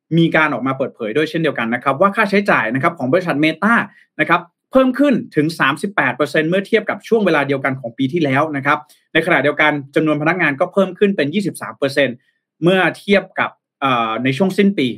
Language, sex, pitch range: Thai, male, 145-200 Hz